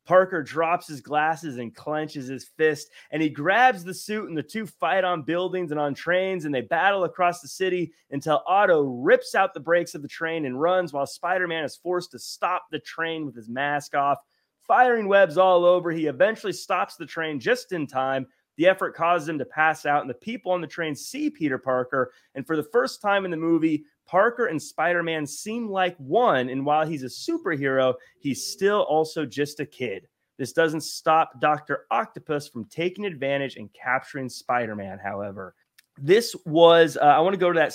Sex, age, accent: male, 30-49, American